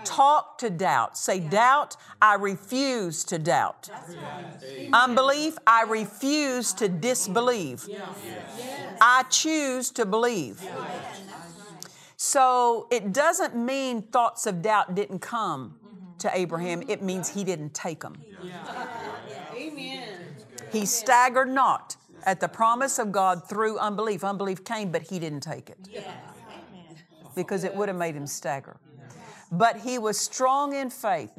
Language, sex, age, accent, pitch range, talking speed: English, female, 50-69, American, 175-245 Hz, 125 wpm